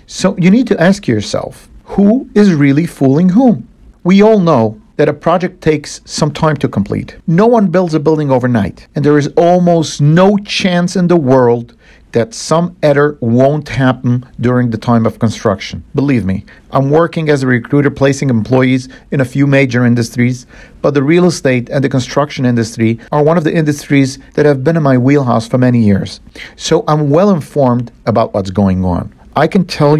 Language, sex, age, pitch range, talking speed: English, male, 50-69, 120-165 Hz, 190 wpm